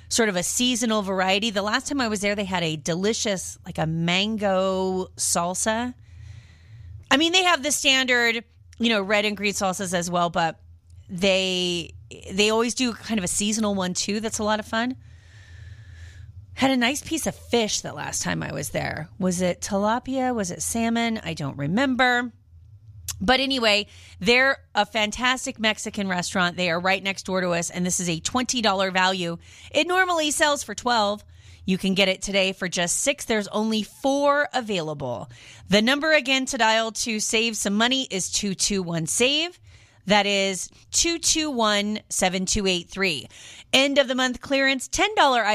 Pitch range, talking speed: 170-230 Hz, 180 wpm